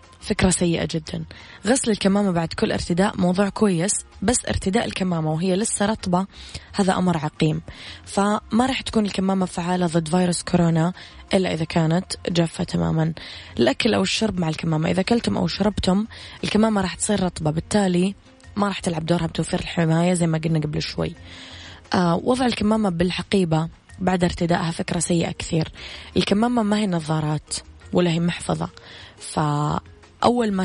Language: Arabic